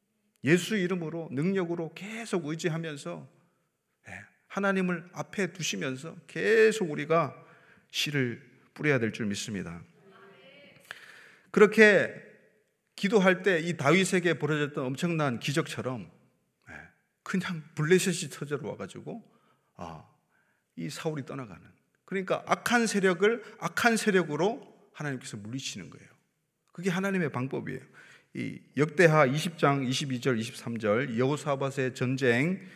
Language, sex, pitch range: Korean, male, 135-185 Hz